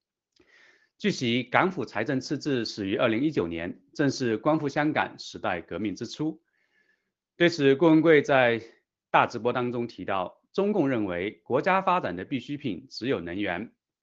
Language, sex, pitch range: Chinese, male, 110-160 Hz